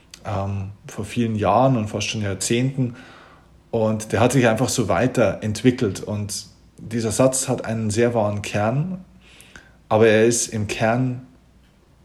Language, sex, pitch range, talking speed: German, male, 110-135 Hz, 135 wpm